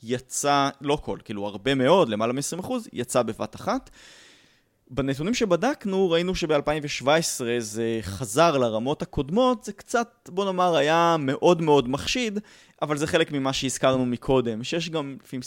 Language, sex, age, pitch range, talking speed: Hebrew, male, 20-39, 120-160 Hz, 140 wpm